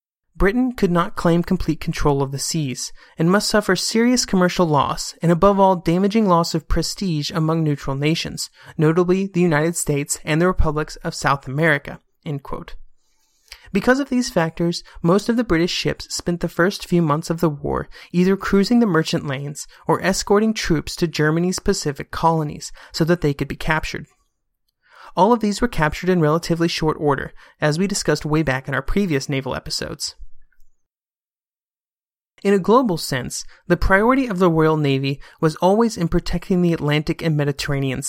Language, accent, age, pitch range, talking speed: English, American, 30-49, 150-190 Hz, 170 wpm